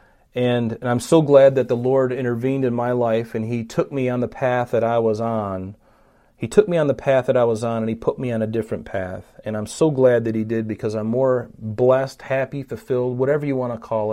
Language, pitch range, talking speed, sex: English, 115-135 Hz, 250 wpm, male